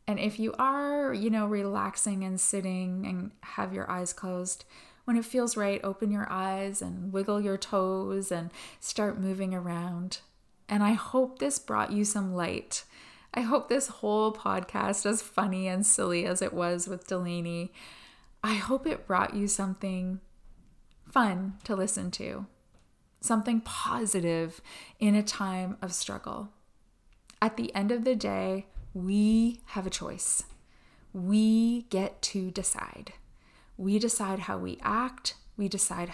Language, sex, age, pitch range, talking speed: English, female, 20-39, 185-220 Hz, 150 wpm